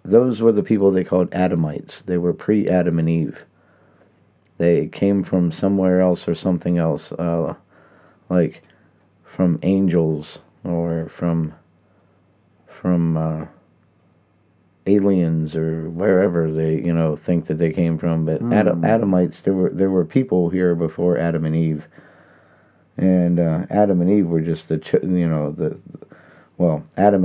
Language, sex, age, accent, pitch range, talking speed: English, male, 50-69, American, 85-95 Hz, 145 wpm